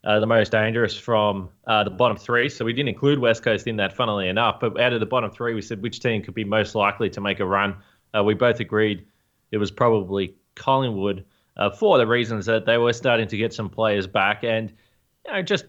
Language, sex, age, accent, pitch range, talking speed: English, male, 20-39, Australian, 110-135 Hz, 235 wpm